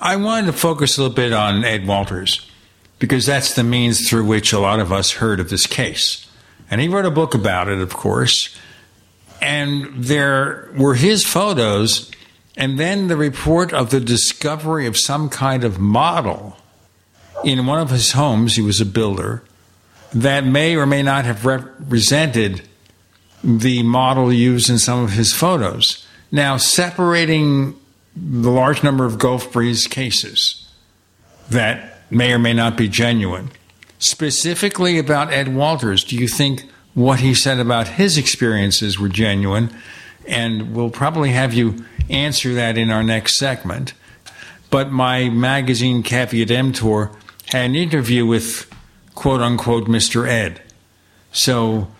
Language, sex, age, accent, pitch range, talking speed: English, male, 60-79, American, 110-135 Hz, 150 wpm